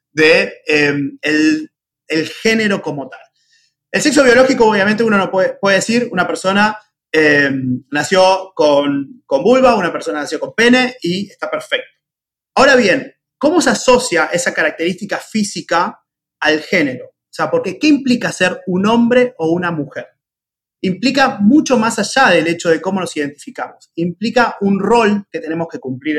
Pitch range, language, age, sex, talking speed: 160-235 Hz, Spanish, 30-49, male, 160 wpm